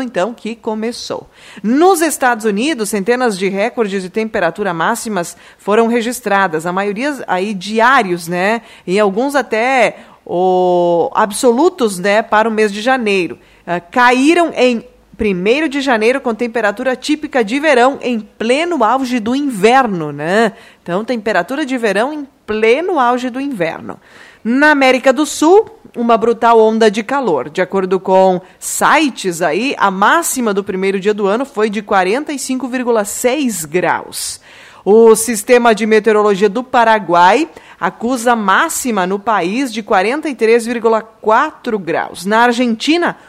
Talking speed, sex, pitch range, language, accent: 135 wpm, female, 200-250 Hz, Portuguese, Brazilian